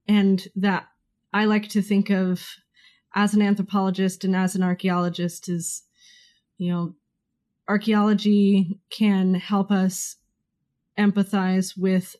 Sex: female